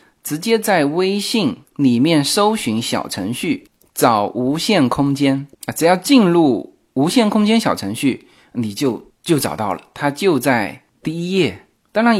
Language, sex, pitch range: Chinese, male, 130-210 Hz